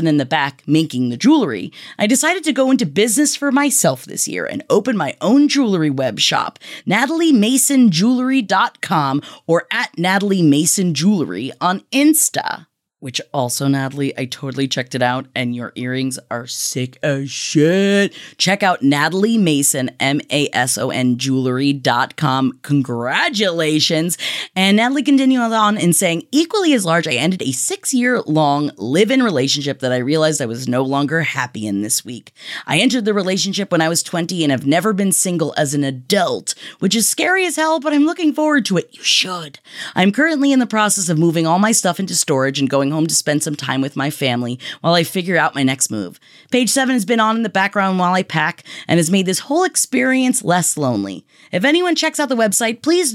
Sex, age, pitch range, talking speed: female, 20-39, 140-230 Hz, 185 wpm